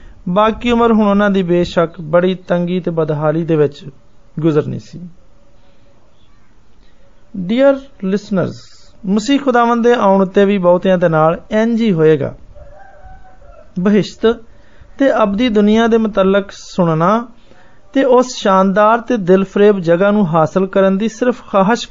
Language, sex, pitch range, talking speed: Hindi, male, 175-220 Hz, 105 wpm